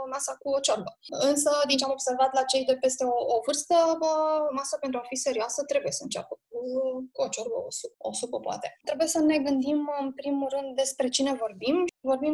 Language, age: Romanian, 20-39